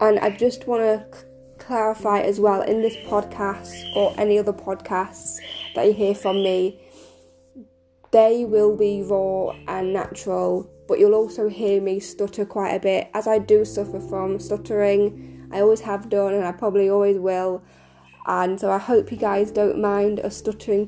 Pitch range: 190-220 Hz